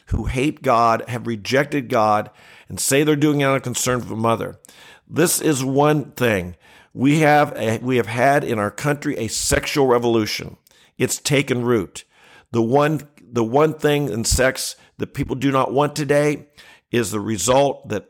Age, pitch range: 50-69, 110-140 Hz